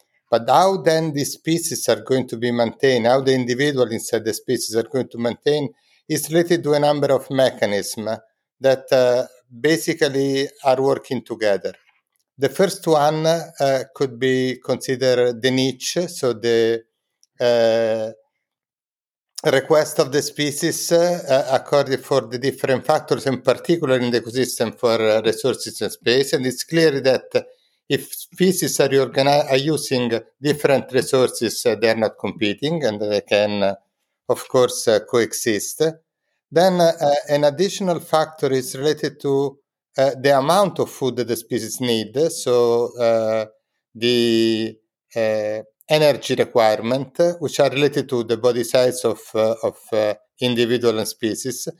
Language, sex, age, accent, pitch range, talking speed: English, male, 60-79, Italian, 120-155 Hz, 145 wpm